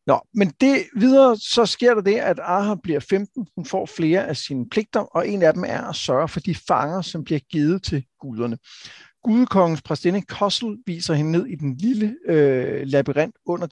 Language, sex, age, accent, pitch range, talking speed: Danish, male, 60-79, native, 145-195 Hz, 195 wpm